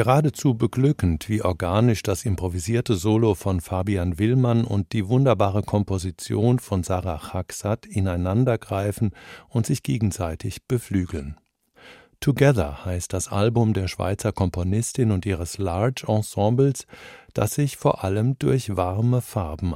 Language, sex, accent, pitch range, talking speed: German, male, German, 95-125 Hz, 120 wpm